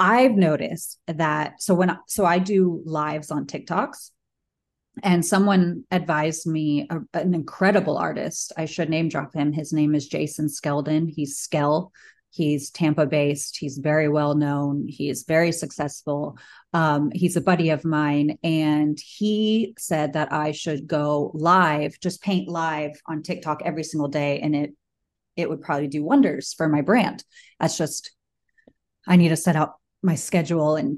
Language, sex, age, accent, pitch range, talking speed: English, female, 30-49, American, 150-185 Hz, 165 wpm